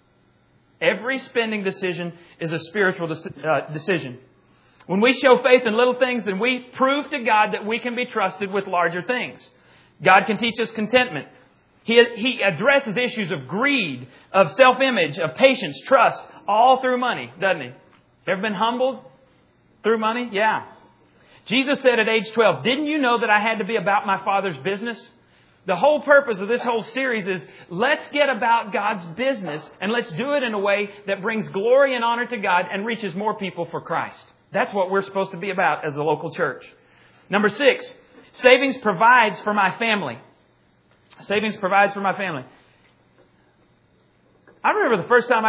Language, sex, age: English, male, 40-59